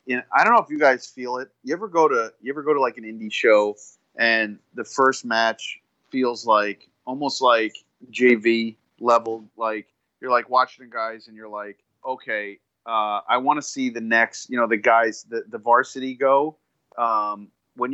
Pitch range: 115-145 Hz